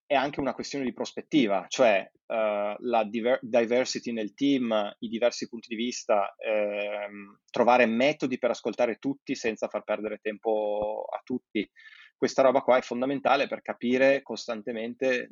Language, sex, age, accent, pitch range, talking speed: Italian, male, 20-39, native, 105-130 Hz, 140 wpm